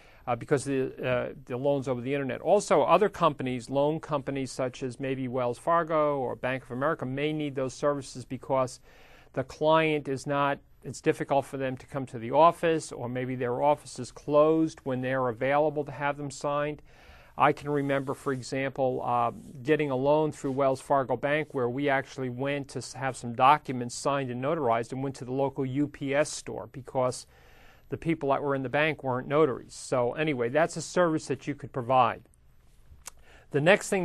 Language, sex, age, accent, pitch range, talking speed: English, male, 50-69, American, 130-155 Hz, 190 wpm